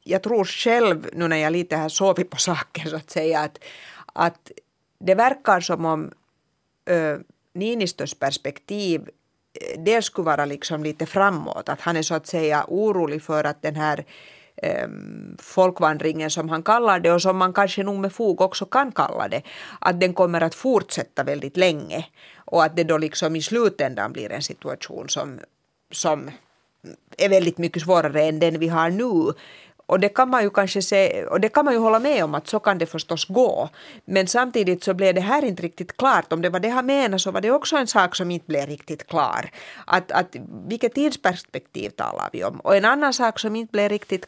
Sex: female